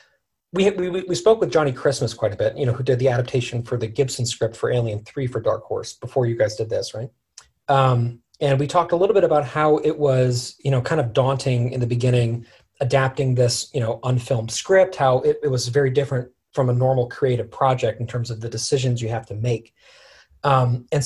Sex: male